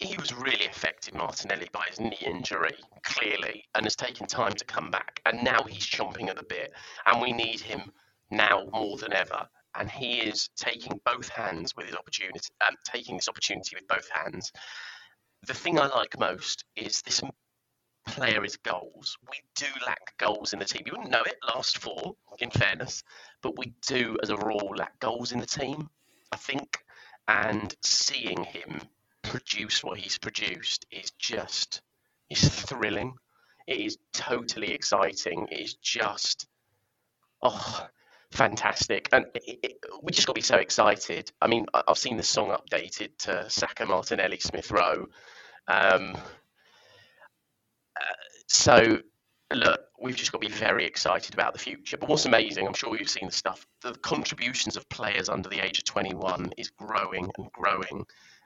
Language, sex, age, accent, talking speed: English, male, 30-49, British, 165 wpm